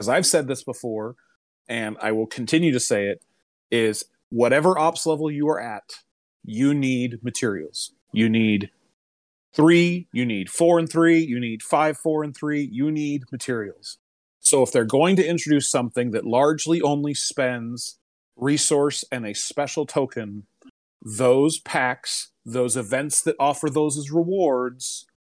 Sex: male